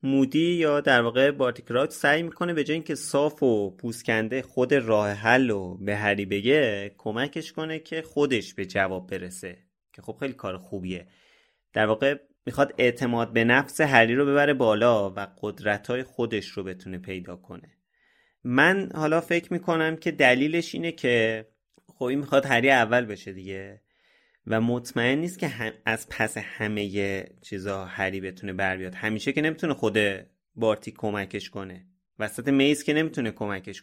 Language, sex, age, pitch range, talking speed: Persian, male, 30-49, 100-145 Hz, 155 wpm